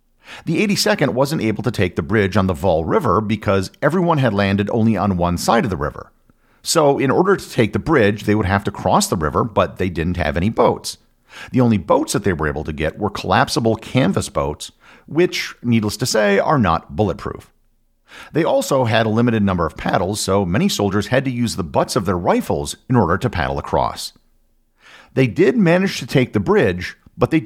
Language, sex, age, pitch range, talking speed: English, male, 50-69, 90-135 Hz, 210 wpm